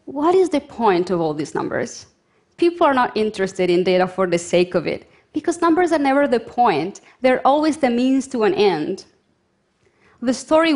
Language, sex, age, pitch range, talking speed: Russian, female, 30-49, 195-275 Hz, 190 wpm